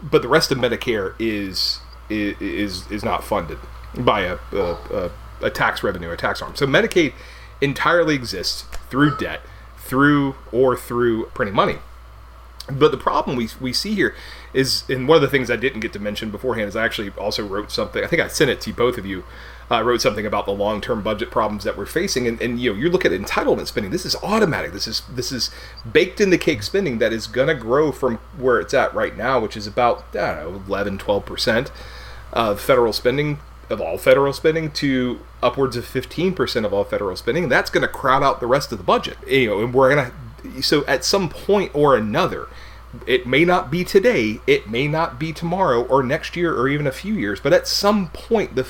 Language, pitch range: English, 110-170 Hz